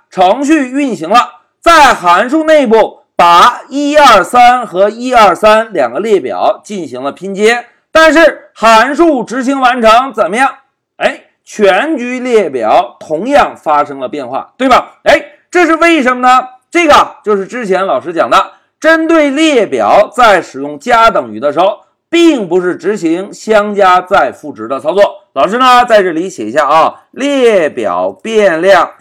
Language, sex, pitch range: Chinese, male, 205-310 Hz